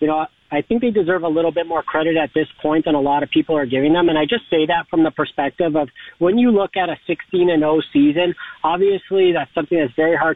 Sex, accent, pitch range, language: male, American, 155-185 Hz, English